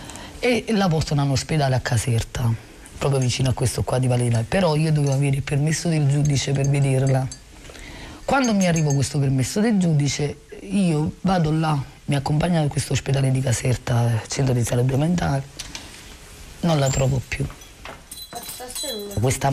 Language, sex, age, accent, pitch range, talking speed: Italian, female, 30-49, native, 125-150 Hz, 155 wpm